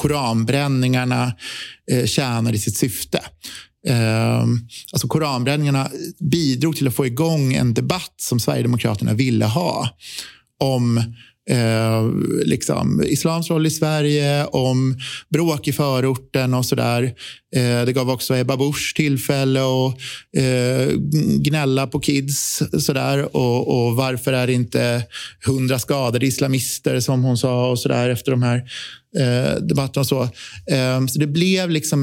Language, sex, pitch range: Swedish, male, 125-150 Hz